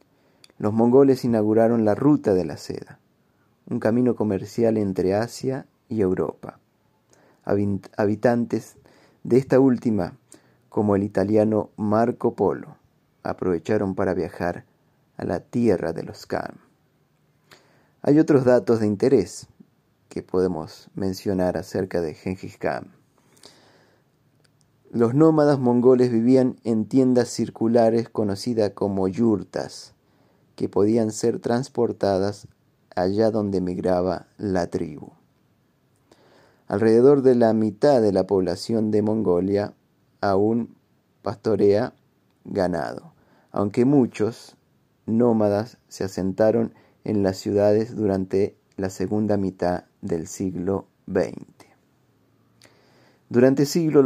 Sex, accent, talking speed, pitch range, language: male, Argentinian, 105 wpm, 100-120 Hz, Spanish